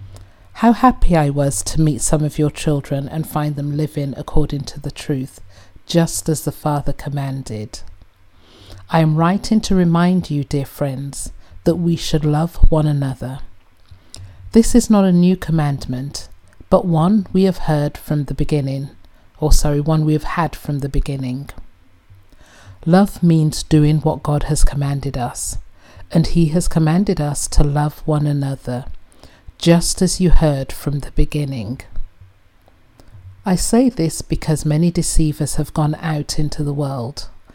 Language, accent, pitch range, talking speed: English, British, 115-160 Hz, 155 wpm